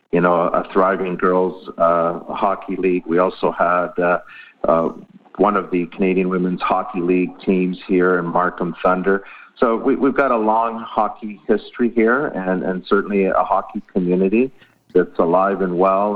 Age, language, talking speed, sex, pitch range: 50-69, English, 165 wpm, male, 90-105 Hz